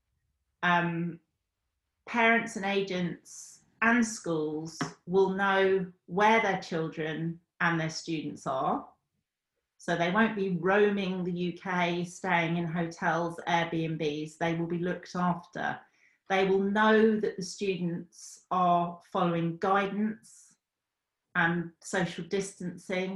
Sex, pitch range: female, 170-205 Hz